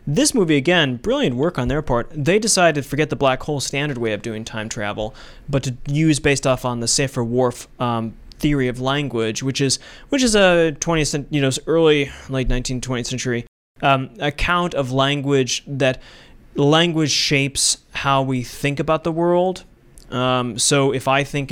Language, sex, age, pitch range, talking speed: English, male, 20-39, 125-150 Hz, 180 wpm